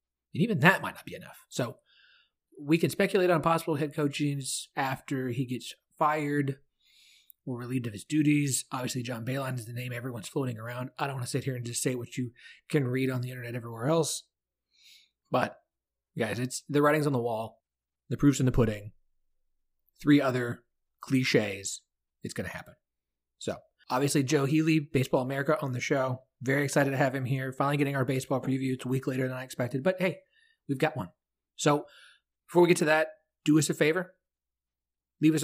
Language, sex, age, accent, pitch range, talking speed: English, male, 30-49, American, 125-155 Hz, 195 wpm